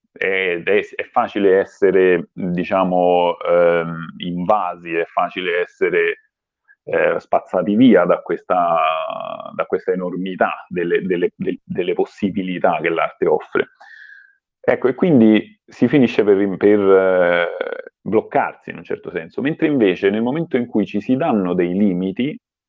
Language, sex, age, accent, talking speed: Italian, male, 40-59, native, 125 wpm